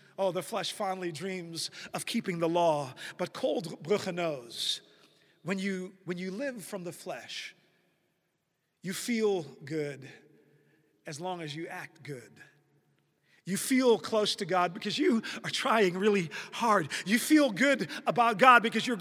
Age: 40-59